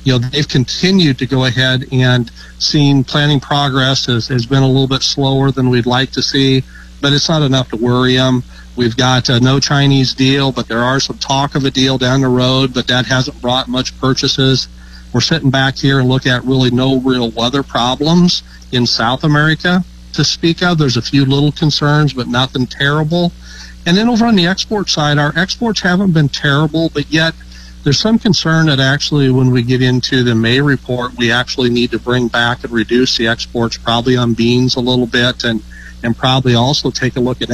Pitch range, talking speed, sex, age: 120-140 Hz, 205 wpm, male, 50-69